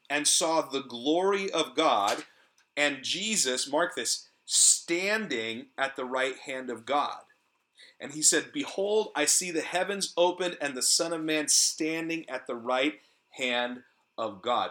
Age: 40-59